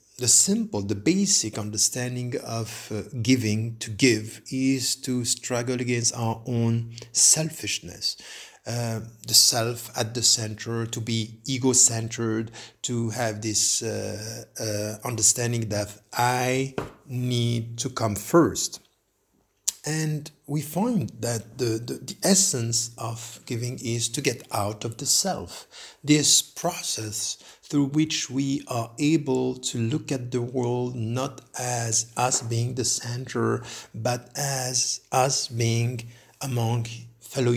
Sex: male